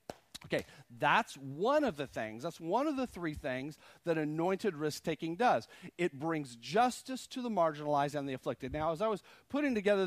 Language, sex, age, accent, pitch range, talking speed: English, male, 40-59, American, 160-210 Hz, 205 wpm